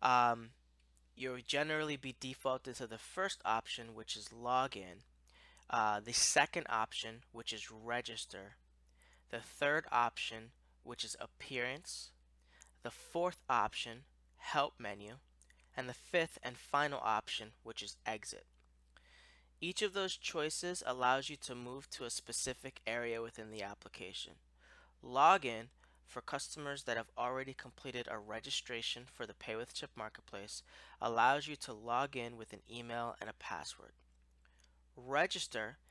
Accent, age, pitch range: American, 20-39, 100-130 Hz